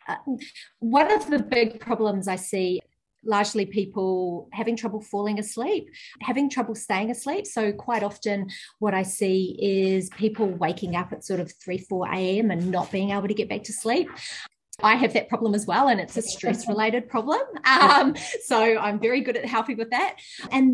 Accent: Australian